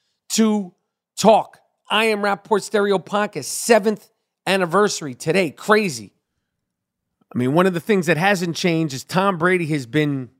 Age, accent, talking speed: 40-59, American, 145 wpm